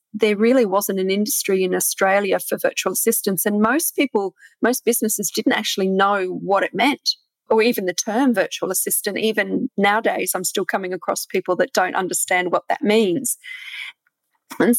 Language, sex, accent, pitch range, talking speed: English, female, Australian, 195-250 Hz, 165 wpm